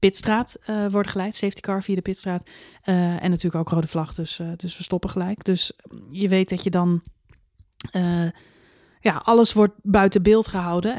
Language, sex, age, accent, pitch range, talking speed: Dutch, female, 30-49, Dutch, 180-205 Hz, 185 wpm